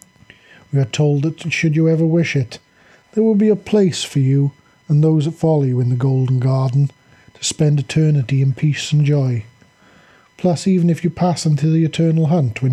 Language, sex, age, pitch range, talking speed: English, male, 40-59, 125-150 Hz, 200 wpm